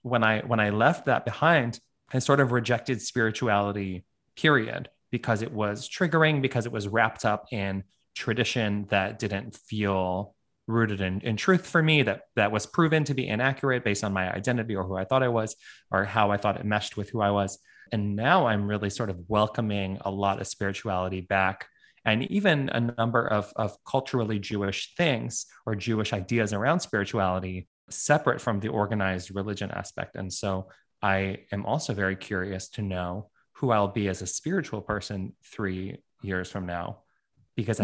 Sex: male